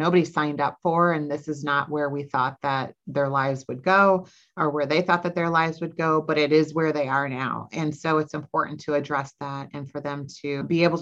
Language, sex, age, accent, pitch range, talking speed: English, female, 30-49, American, 140-165 Hz, 245 wpm